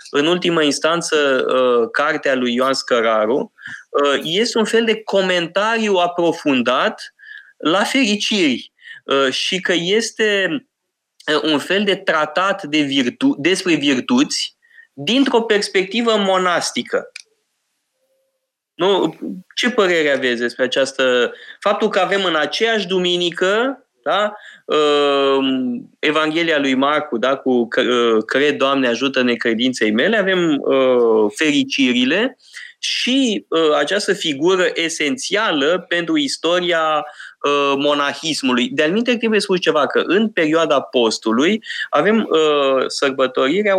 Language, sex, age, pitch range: Romanian, male, 20-39, 140-225 Hz